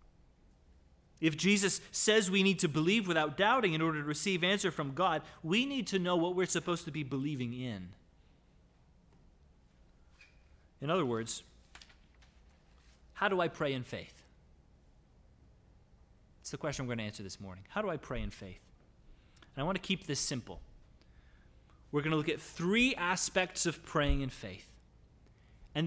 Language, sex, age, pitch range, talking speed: English, male, 30-49, 105-160 Hz, 160 wpm